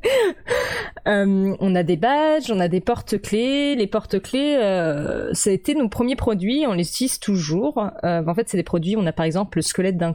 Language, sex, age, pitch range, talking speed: French, female, 30-49, 170-215 Hz, 225 wpm